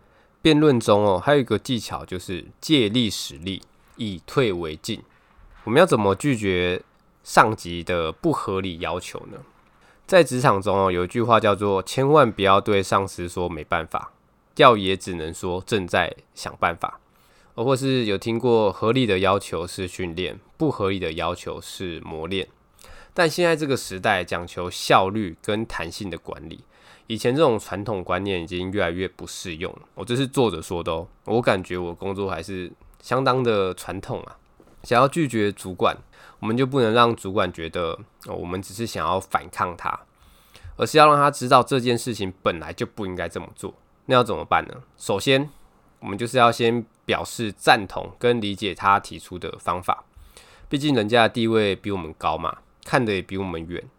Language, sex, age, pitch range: Chinese, male, 20-39, 90-120 Hz